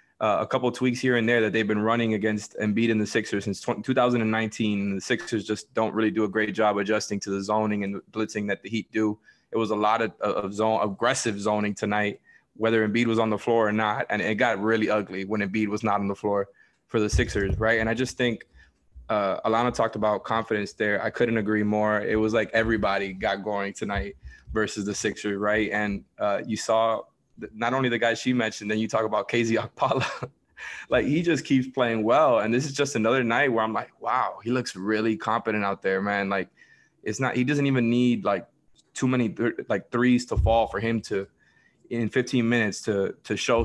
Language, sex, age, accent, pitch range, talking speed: English, male, 20-39, American, 105-120 Hz, 225 wpm